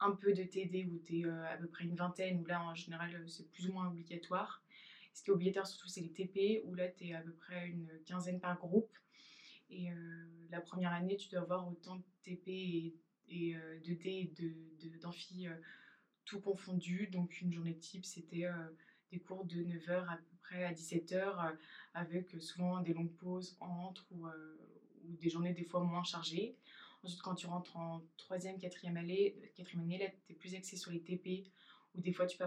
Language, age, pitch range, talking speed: French, 20-39, 170-185 Hz, 220 wpm